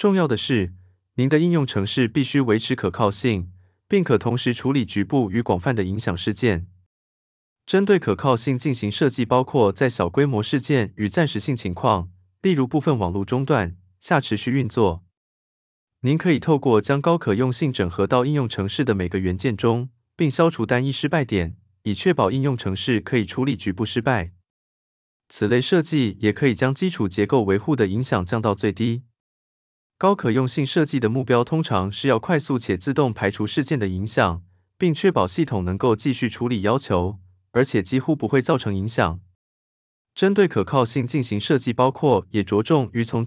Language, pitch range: Chinese, 100-140 Hz